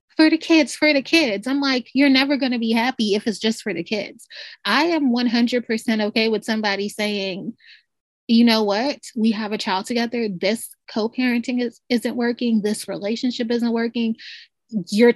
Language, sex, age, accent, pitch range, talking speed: English, female, 20-39, American, 205-240 Hz, 170 wpm